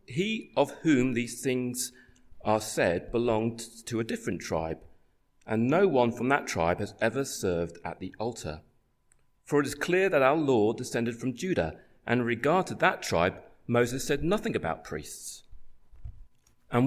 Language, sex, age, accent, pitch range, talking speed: English, male, 40-59, British, 105-145 Hz, 165 wpm